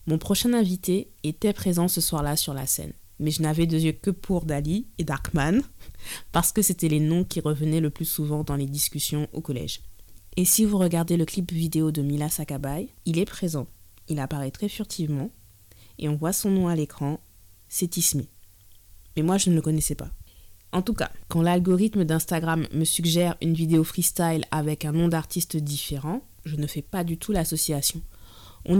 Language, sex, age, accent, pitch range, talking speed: French, female, 20-39, French, 150-180 Hz, 190 wpm